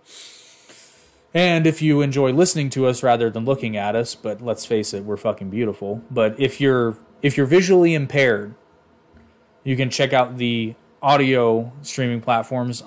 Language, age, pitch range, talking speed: English, 20-39, 120-150 Hz, 160 wpm